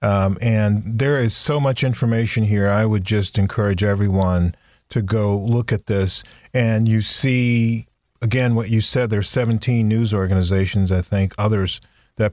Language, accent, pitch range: English, American, 100-120 Hz